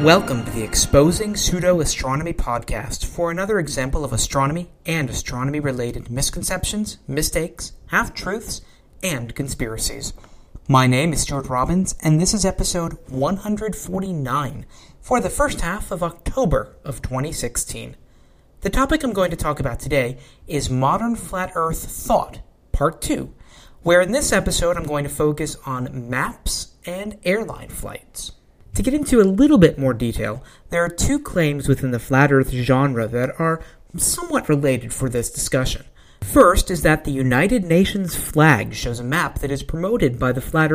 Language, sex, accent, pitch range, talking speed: English, male, American, 130-180 Hz, 155 wpm